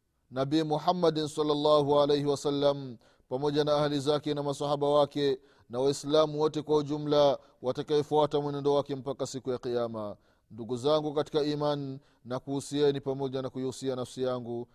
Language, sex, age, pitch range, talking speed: Swahili, male, 30-49, 125-145 Hz, 140 wpm